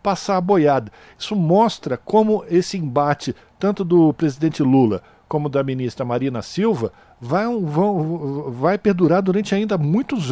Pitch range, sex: 140-185 Hz, male